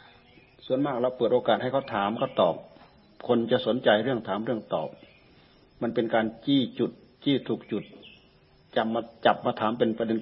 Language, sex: Thai, male